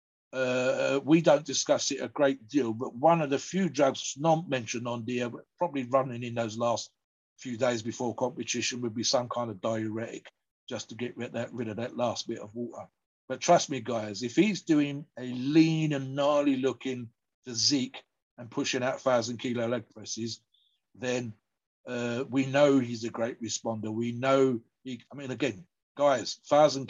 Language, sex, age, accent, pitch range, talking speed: English, male, 50-69, British, 115-135 Hz, 185 wpm